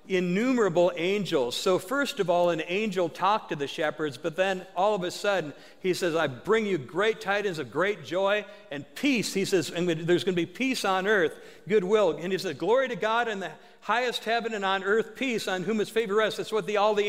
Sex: male